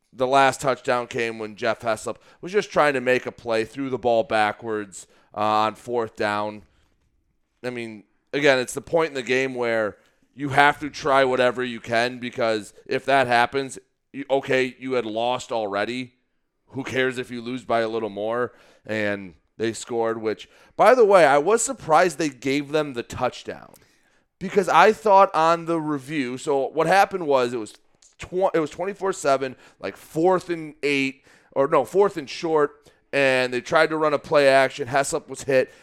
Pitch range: 120-155 Hz